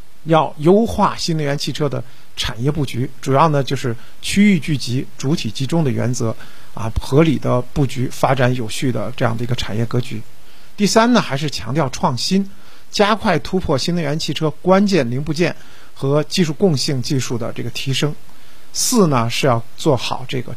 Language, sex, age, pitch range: Chinese, male, 50-69, 125-170 Hz